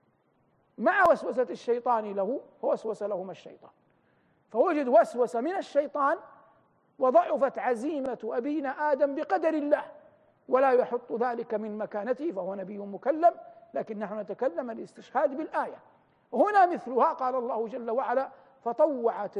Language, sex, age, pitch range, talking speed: Arabic, male, 50-69, 220-300 Hz, 115 wpm